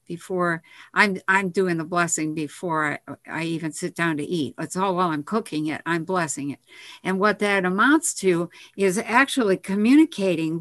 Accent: American